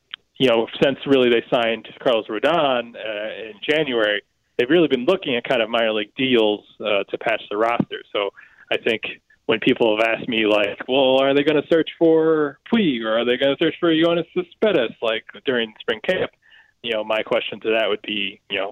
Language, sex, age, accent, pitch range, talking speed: English, male, 20-39, American, 115-180 Hz, 210 wpm